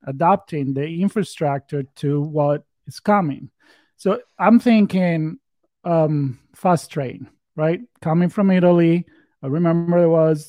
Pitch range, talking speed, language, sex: 145-175 Hz, 120 wpm, English, male